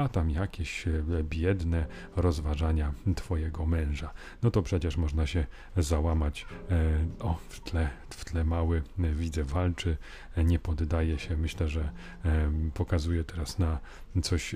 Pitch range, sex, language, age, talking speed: 80-95 Hz, male, Polish, 40-59, 125 wpm